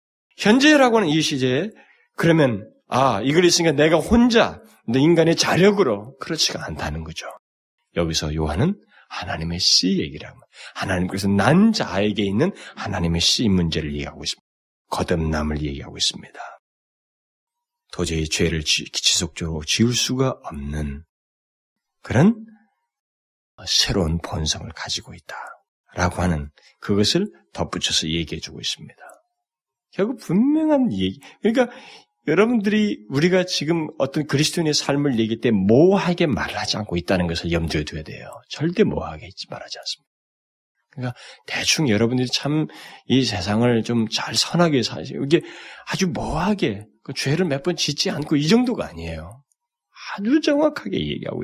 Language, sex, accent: Korean, male, native